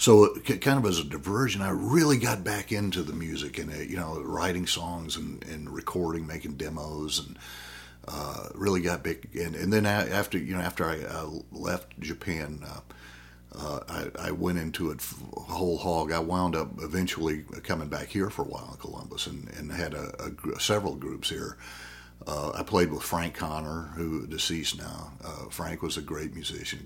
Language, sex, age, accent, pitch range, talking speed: English, male, 50-69, American, 75-90 Hz, 180 wpm